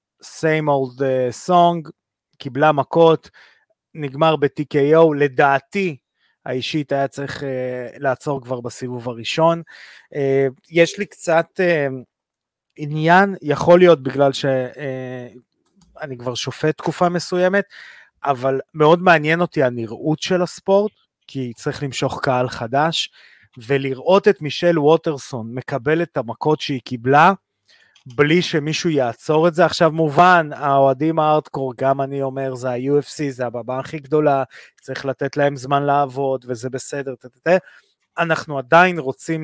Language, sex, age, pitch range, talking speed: Hebrew, male, 30-49, 130-160 Hz, 120 wpm